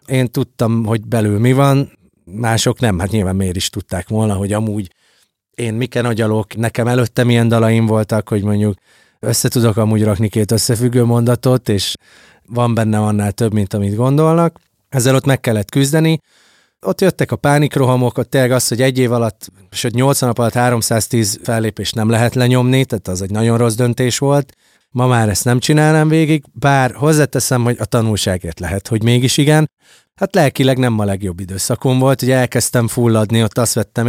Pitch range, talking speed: 105-130 Hz, 175 wpm